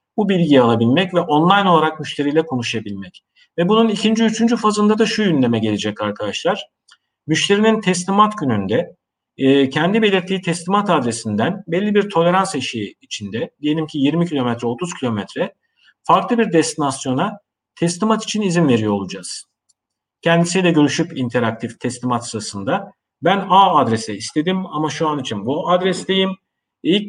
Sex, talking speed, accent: male, 135 wpm, native